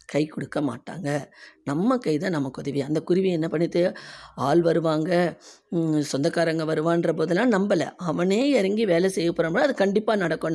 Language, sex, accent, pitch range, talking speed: Tamil, female, native, 145-185 Hz, 140 wpm